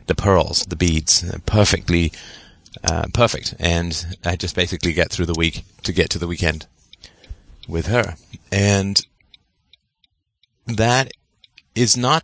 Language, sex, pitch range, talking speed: English, male, 85-115 Hz, 125 wpm